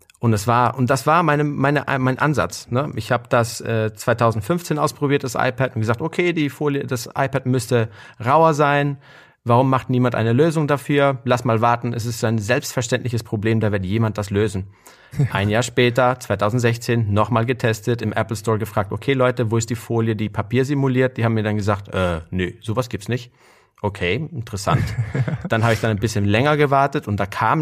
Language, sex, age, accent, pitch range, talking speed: German, male, 30-49, German, 105-130 Hz, 195 wpm